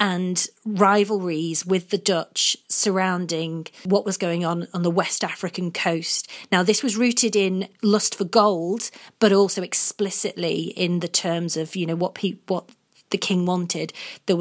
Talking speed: 160 wpm